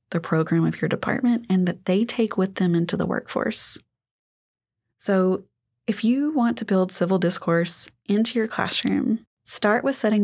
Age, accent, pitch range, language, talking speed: 30-49, American, 175-210 Hz, English, 165 wpm